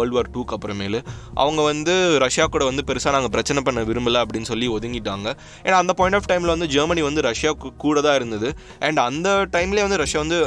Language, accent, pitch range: Tamil, native, 115-155 Hz